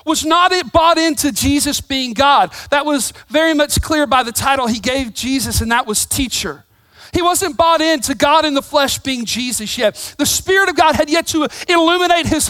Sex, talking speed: male, 205 wpm